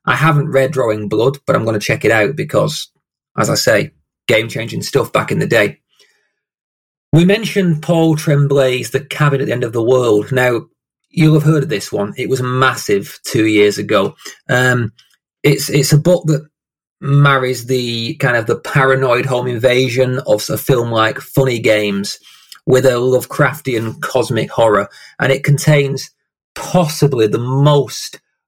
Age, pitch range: 30-49, 125-150 Hz